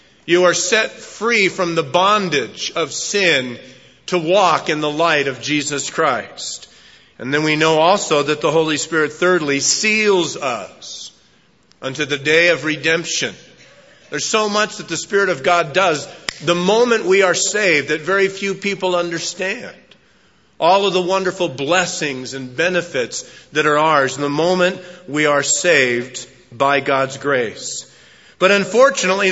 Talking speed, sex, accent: 150 wpm, male, American